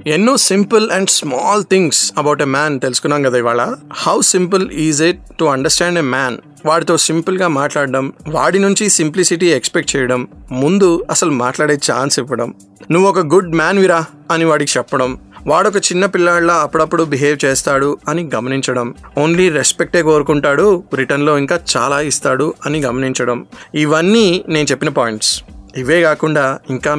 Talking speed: 145 wpm